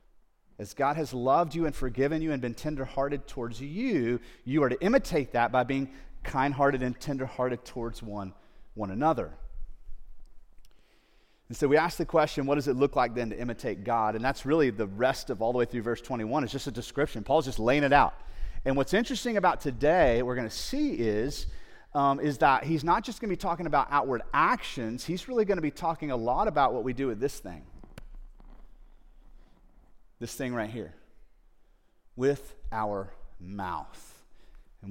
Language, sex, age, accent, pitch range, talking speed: English, male, 30-49, American, 120-155 Hz, 180 wpm